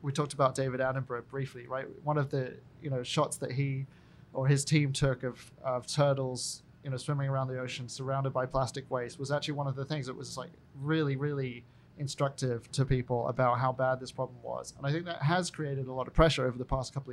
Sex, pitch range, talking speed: male, 130-150 Hz, 230 wpm